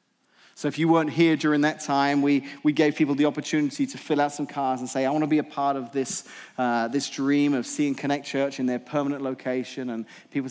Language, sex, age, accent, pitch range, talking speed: English, male, 30-49, British, 130-155 Hz, 240 wpm